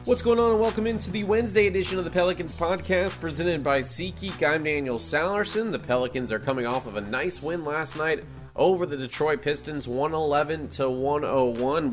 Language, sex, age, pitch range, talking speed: English, male, 30-49, 120-150 Hz, 175 wpm